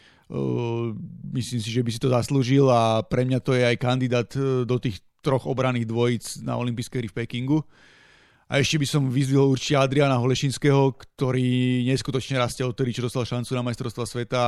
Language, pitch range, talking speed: Slovak, 125-140 Hz, 175 wpm